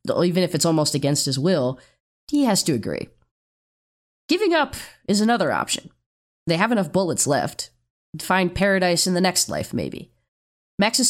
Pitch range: 140-180 Hz